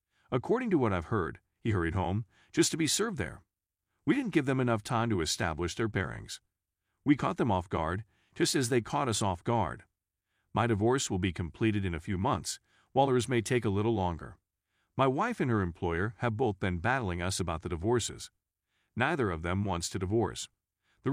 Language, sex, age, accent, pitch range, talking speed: English, male, 50-69, American, 90-125 Hz, 200 wpm